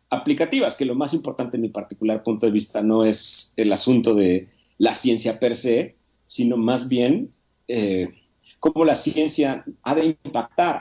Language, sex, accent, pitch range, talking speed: Spanish, male, Mexican, 105-130 Hz, 160 wpm